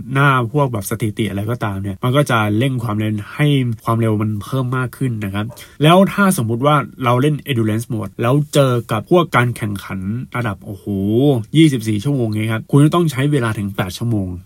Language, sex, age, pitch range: Thai, male, 20-39, 110-150 Hz